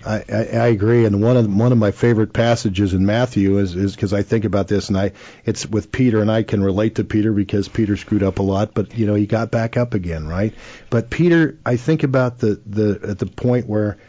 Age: 50-69